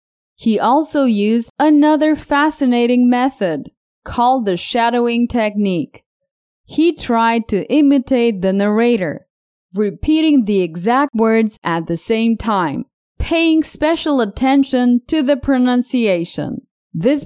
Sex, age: female, 20-39